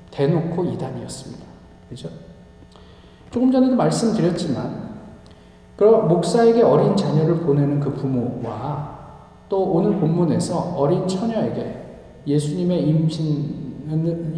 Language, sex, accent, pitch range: Korean, male, native, 135-200 Hz